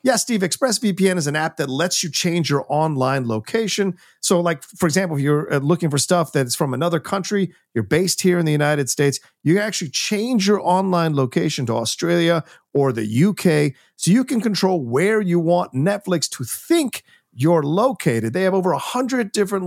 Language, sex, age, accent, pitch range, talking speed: English, male, 40-59, American, 135-180 Hz, 190 wpm